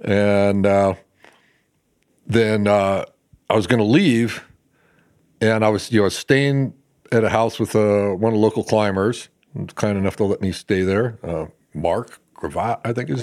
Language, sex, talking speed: English, male, 170 wpm